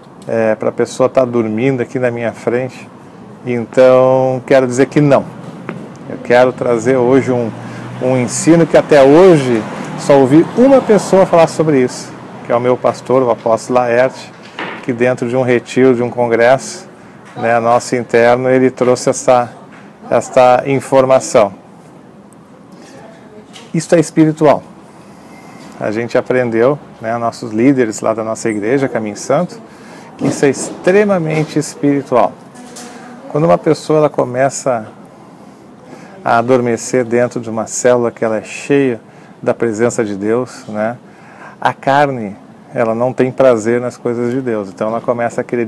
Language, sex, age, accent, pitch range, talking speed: Portuguese, male, 40-59, Brazilian, 115-140 Hz, 145 wpm